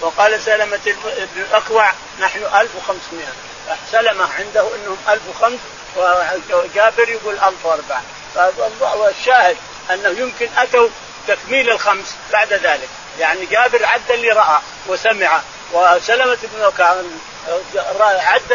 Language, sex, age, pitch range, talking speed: Arabic, male, 50-69, 190-245 Hz, 100 wpm